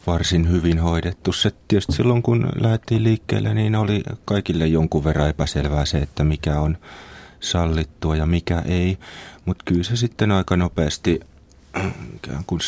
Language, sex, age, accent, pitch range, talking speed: Finnish, male, 30-49, native, 80-100 Hz, 135 wpm